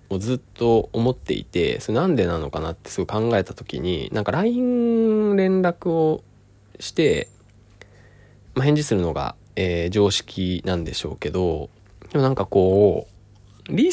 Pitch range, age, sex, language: 100-150 Hz, 20-39, male, Japanese